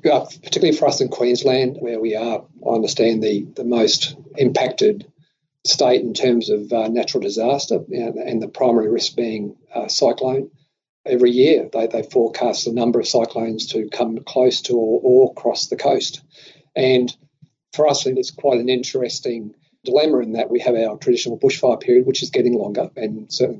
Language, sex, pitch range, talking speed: English, male, 115-150 Hz, 180 wpm